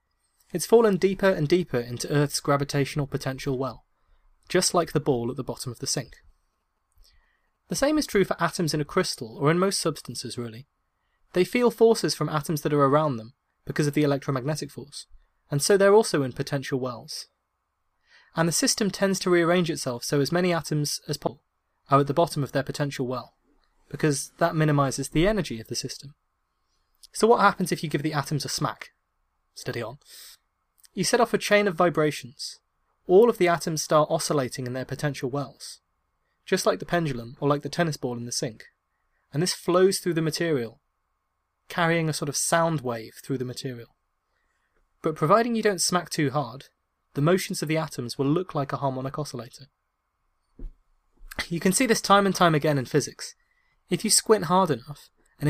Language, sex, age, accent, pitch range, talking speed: English, male, 20-39, British, 135-175 Hz, 190 wpm